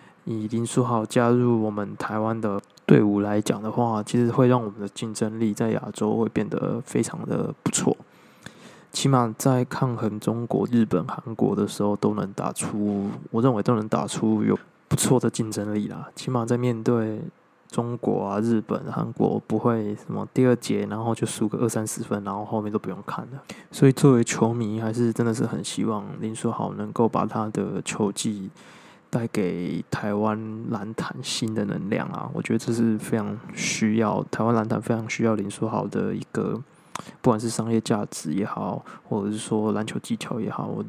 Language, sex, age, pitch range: Chinese, male, 20-39, 105-120 Hz